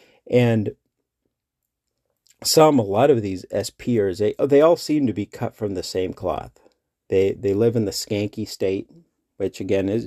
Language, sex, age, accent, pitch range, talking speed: English, male, 50-69, American, 95-115 Hz, 165 wpm